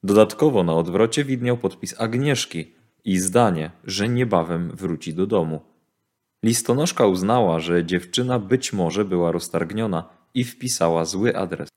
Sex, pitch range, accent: male, 90-110 Hz, native